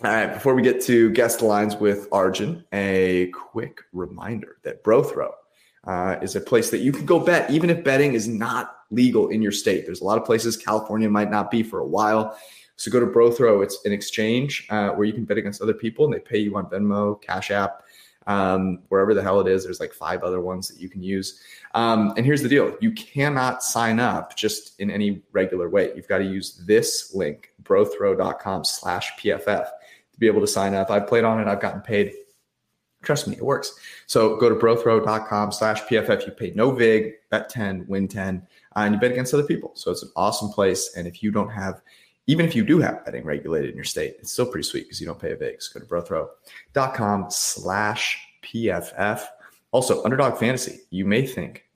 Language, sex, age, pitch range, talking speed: English, male, 20-39, 100-130 Hz, 215 wpm